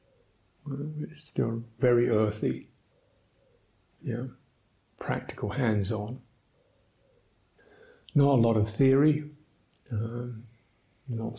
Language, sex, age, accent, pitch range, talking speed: English, male, 50-69, British, 110-125 Hz, 80 wpm